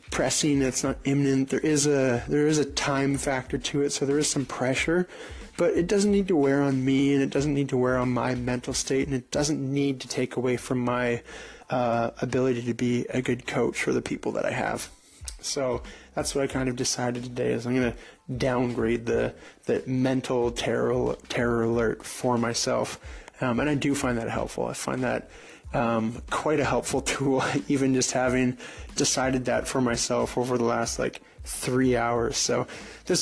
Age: 20-39